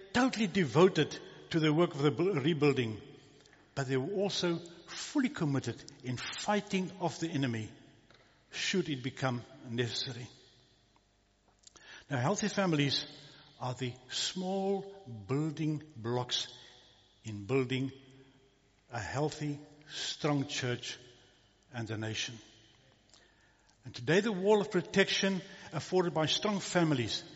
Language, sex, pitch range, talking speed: English, male, 120-165 Hz, 110 wpm